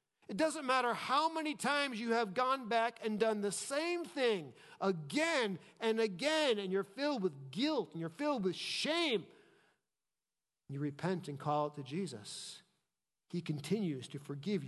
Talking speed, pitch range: 160 wpm, 150-205 Hz